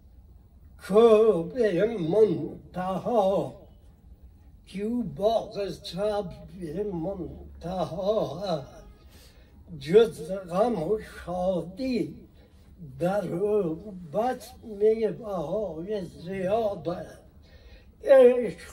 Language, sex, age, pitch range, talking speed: Persian, male, 60-79, 160-215 Hz, 50 wpm